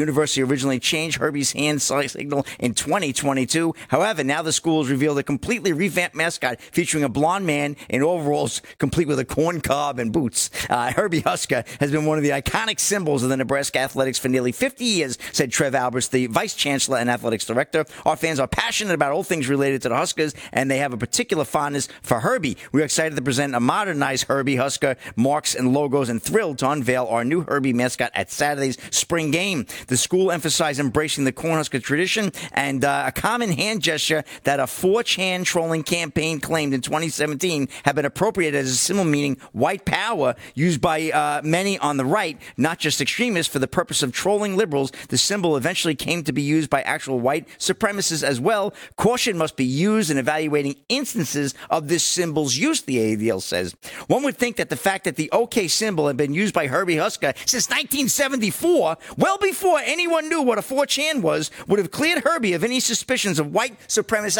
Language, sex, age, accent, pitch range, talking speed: English, male, 50-69, American, 140-190 Hz, 195 wpm